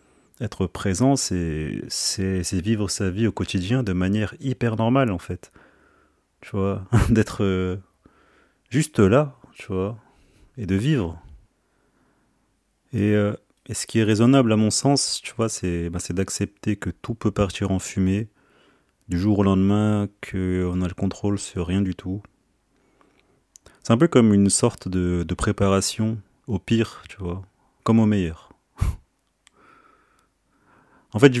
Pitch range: 95-110 Hz